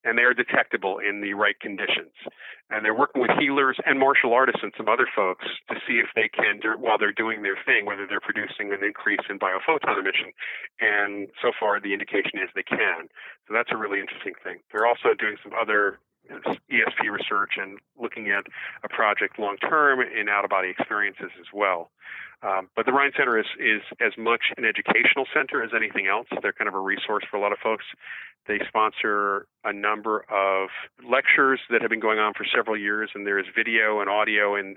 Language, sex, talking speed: English, male, 200 wpm